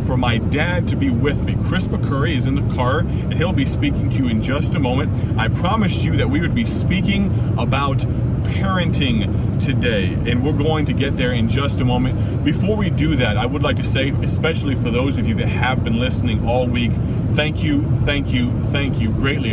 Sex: male